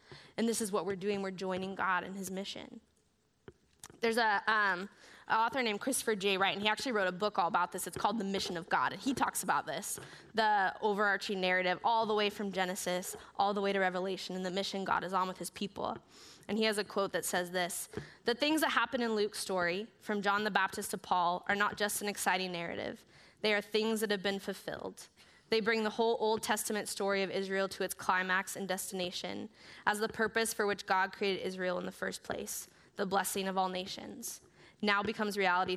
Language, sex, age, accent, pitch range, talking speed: English, female, 10-29, American, 185-220 Hz, 220 wpm